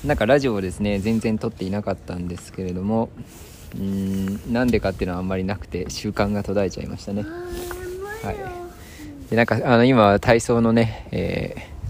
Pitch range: 95-130 Hz